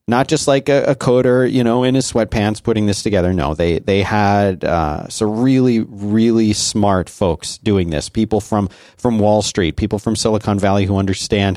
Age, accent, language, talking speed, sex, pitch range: 40-59, American, English, 190 wpm, male, 95-115 Hz